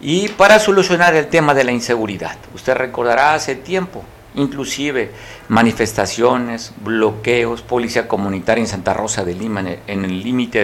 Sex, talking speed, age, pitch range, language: male, 140 wpm, 50-69, 110-130 Hz, Spanish